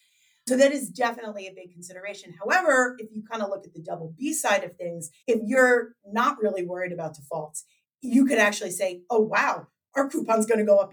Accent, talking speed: American, 215 wpm